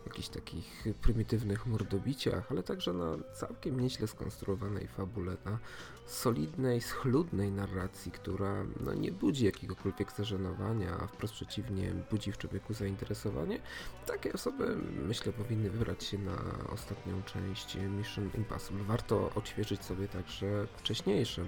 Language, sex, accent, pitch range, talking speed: Polish, male, native, 95-110 Hz, 120 wpm